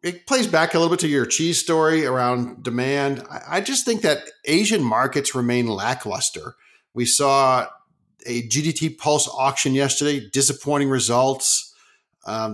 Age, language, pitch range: 50-69, English, 120-155 Hz